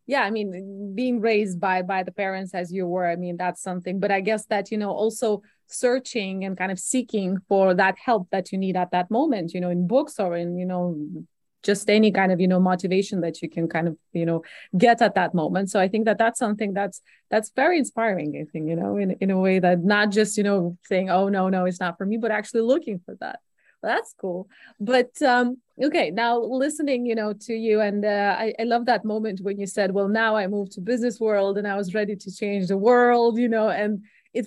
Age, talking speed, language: 20-39, 240 wpm, English